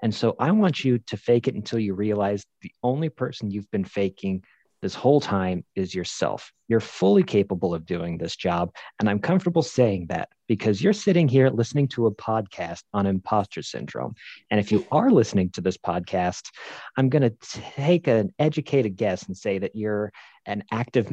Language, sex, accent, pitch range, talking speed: English, male, American, 95-130 Hz, 185 wpm